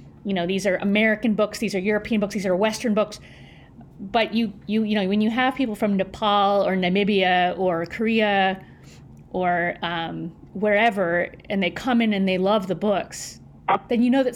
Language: English